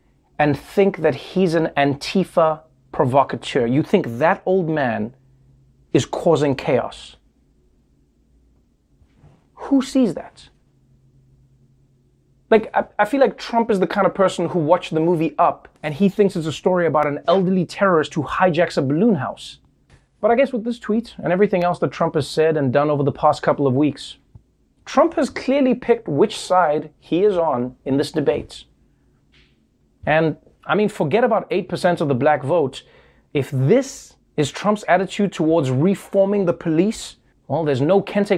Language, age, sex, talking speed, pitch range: English, 30-49, male, 165 wpm, 135-195 Hz